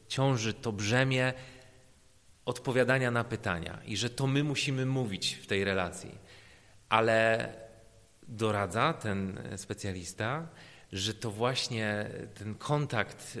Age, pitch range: 30-49, 110-150 Hz